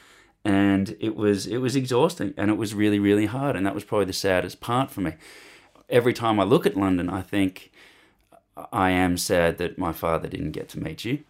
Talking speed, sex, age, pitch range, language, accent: 210 wpm, male, 20-39, 95-115 Hz, English, Australian